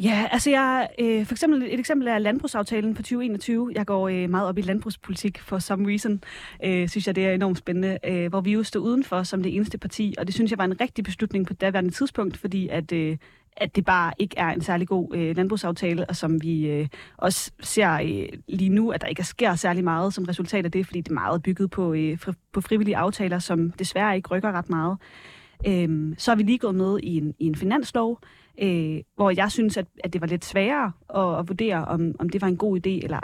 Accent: native